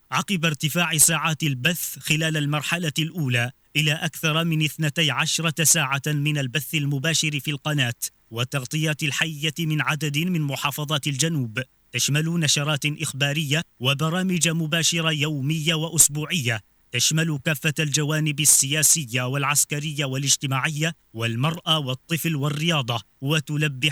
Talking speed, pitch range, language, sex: 105 wpm, 140-160 Hz, Arabic, male